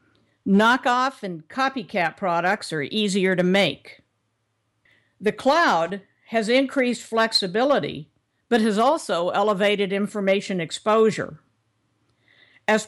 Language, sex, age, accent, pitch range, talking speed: English, female, 50-69, American, 170-225 Hz, 95 wpm